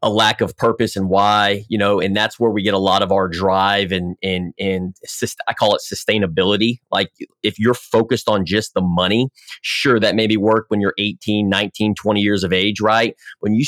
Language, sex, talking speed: English, male, 215 wpm